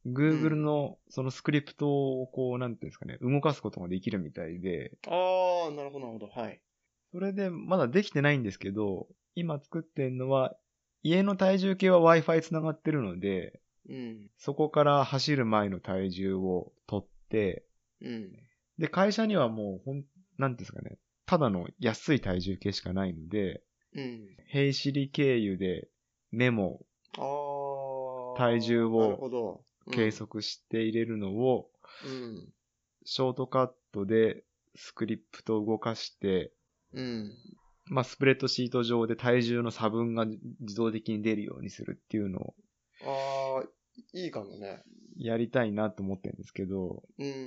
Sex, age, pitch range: male, 20-39, 110-150 Hz